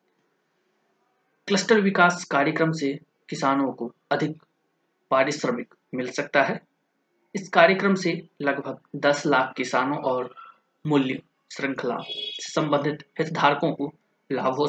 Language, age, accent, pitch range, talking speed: Hindi, 20-39, native, 140-170 Hz, 100 wpm